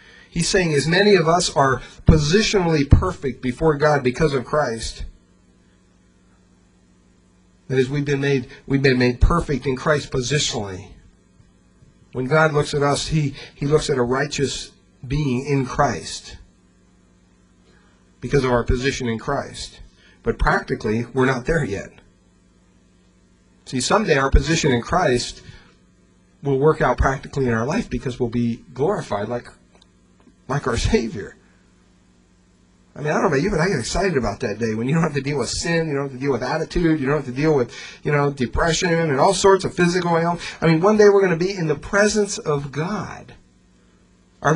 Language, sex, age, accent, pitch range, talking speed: English, male, 40-59, American, 120-175 Hz, 175 wpm